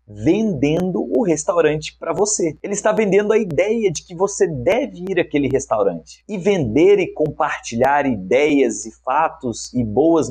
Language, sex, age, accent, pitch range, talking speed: Portuguese, male, 30-49, Brazilian, 135-195 Hz, 150 wpm